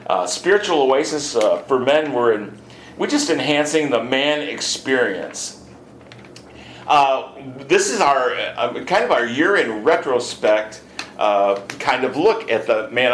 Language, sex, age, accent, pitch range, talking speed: English, male, 50-69, American, 110-150 Hz, 145 wpm